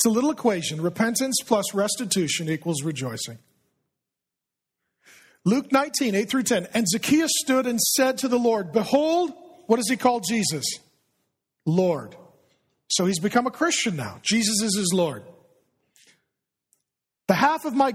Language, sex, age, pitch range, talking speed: English, male, 40-59, 185-260 Hz, 145 wpm